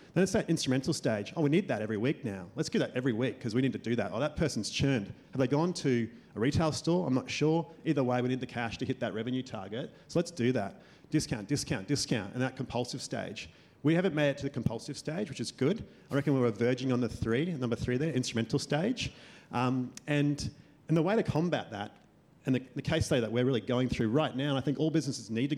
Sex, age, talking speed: male, 40-59, 260 wpm